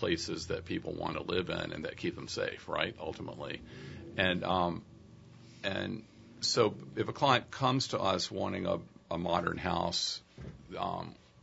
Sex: male